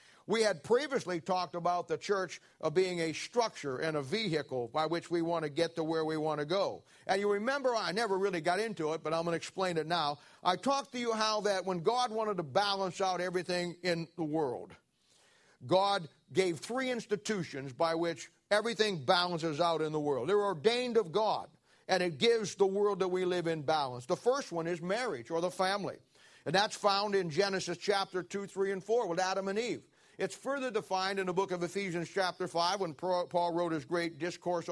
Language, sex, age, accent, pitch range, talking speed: English, male, 50-69, American, 170-210 Hz, 210 wpm